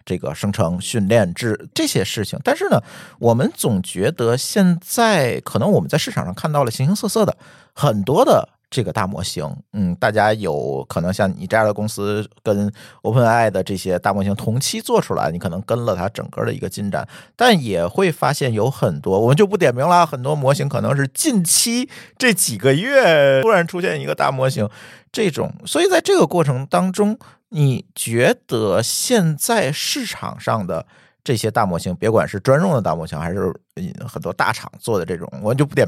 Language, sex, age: Chinese, male, 50-69